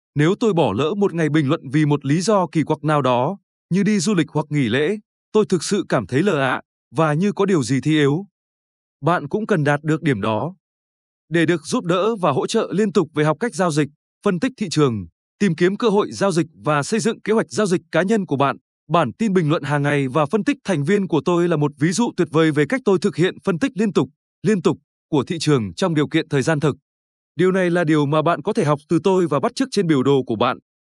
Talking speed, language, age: 265 wpm, Vietnamese, 20-39